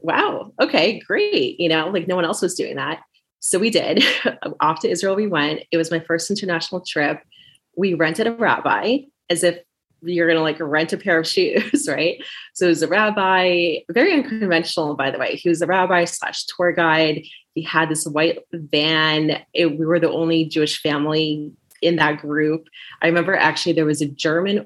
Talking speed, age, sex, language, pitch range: 195 wpm, 20-39, female, English, 160-185 Hz